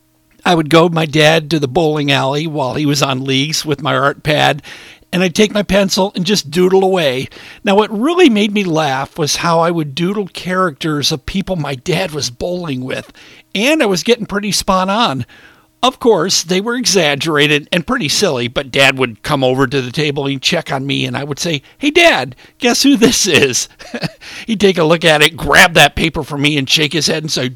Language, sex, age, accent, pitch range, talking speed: English, male, 50-69, American, 150-195 Hz, 220 wpm